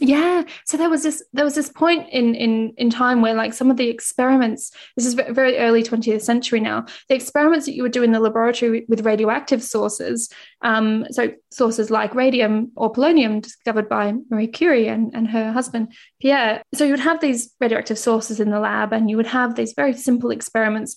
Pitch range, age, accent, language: 225-275 Hz, 20-39, British, English